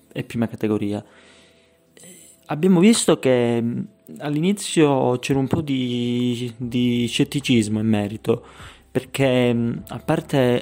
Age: 30-49